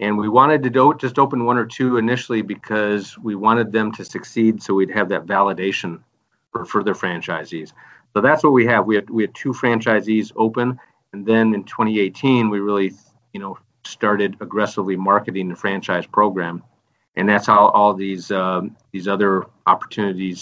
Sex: male